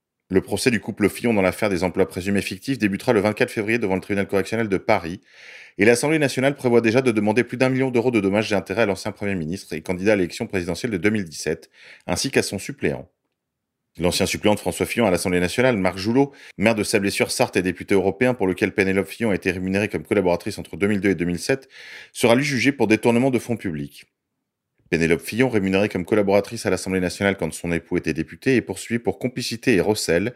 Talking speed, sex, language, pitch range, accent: 215 wpm, male, French, 90-120 Hz, French